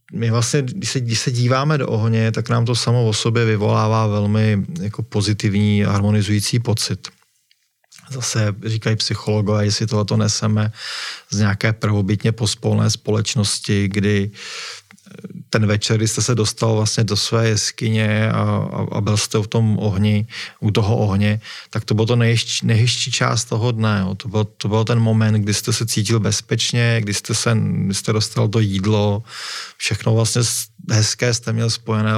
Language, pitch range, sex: Czech, 105-115 Hz, male